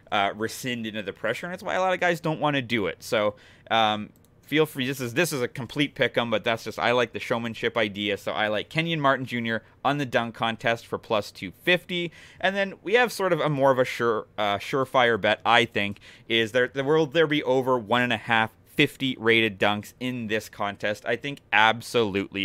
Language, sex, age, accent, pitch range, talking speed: English, male, 30-49, American, 110-140 Hz, 230 wpm